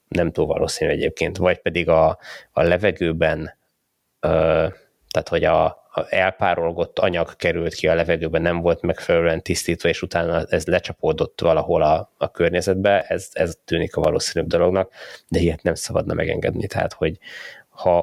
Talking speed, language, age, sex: 145 wpm, Hungarian, 20-39, male